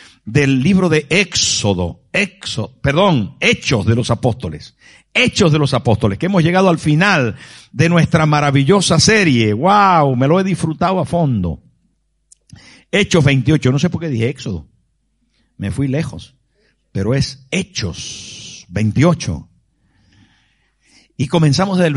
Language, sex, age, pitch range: Spanish, male, 60-79, 115-170 Hz